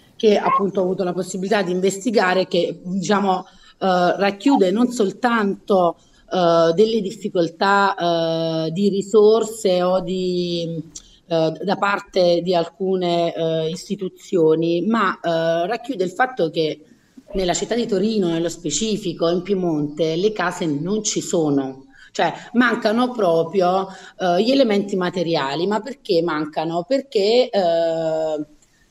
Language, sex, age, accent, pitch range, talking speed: Italian, female, 30-49, native, 170-220 Hz, 125 wpm